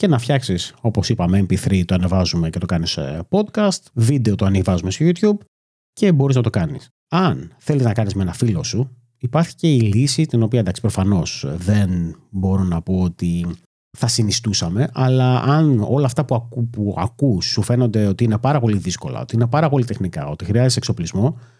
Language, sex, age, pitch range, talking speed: Greek, male, 30-49, 100-130 Hz, 190 wpm